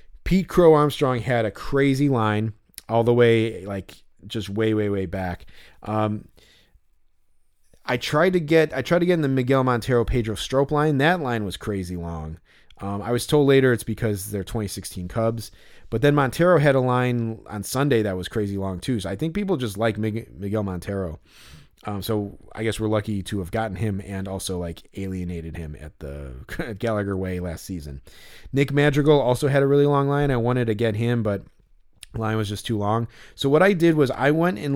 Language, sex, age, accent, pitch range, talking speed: English, male, 30-49, American, 95-130 Hz, 200 wpm